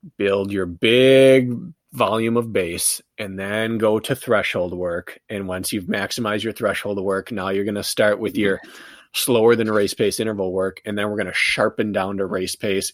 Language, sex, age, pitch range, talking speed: English, male, 20-39, 95-115 Hz, 200 wpm